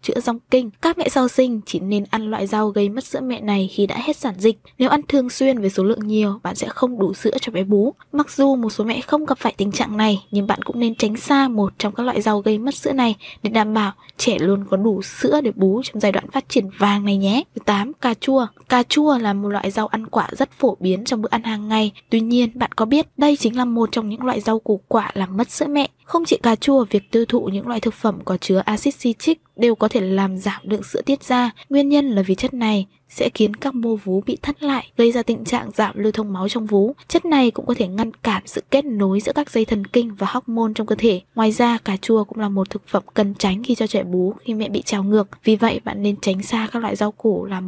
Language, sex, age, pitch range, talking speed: Vietnamese, female, 10-29, 205-260 Hz, 275 wpm